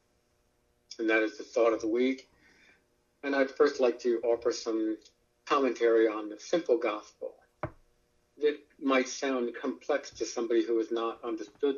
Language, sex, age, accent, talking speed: English, male, 50-69, American, 155 wpm